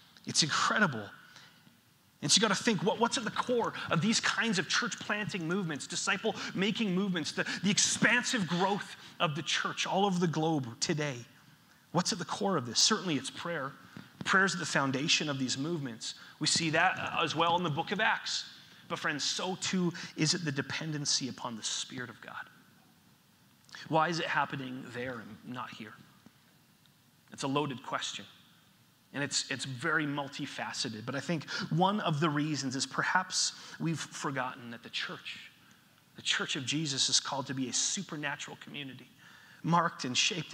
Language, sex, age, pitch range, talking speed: English, male, 30-49, 140-180 Hz, 175 wpm